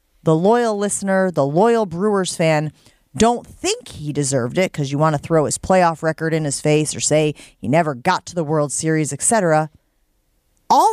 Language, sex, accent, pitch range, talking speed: English, female, American, 170-285 Hz, 185 wpm